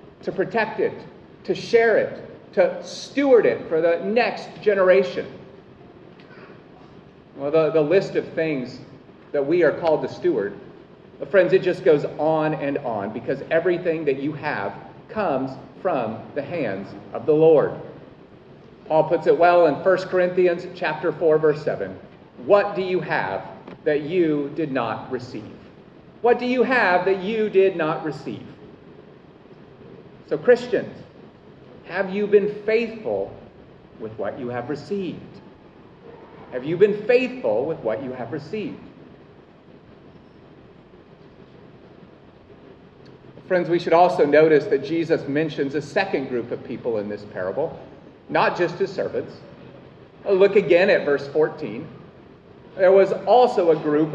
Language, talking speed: English, 135 wpm